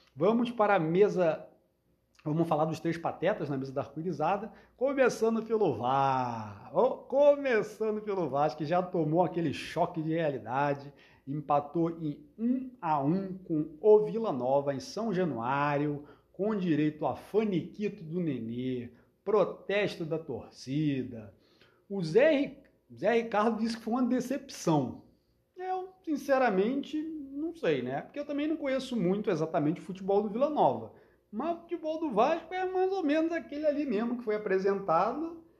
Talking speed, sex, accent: 145 wpm, male, Brazilian